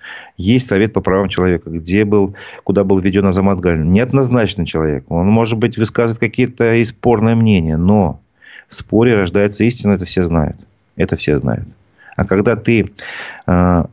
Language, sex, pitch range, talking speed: Russian, male, 90-110 Hz, 160 wpm